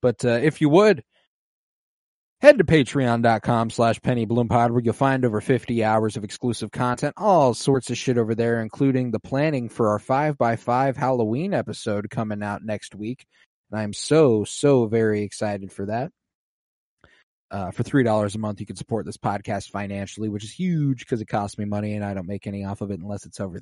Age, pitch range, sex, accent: 20-39, 105-130 Hz, male, American